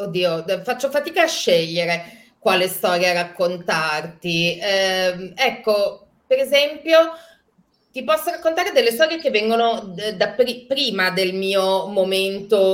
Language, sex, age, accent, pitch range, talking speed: Italian, female, 30-49, native, 170-230 Hz, 120 wpm